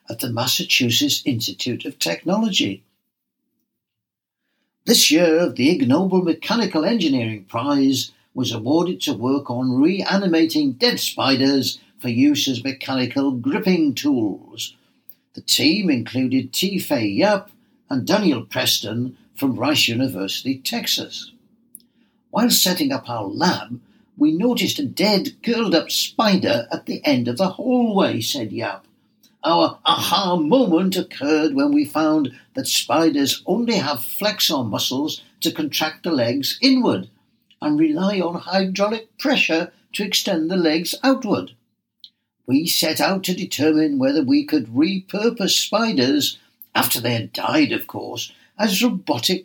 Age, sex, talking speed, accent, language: 60-79, male, 125 wpm, British, English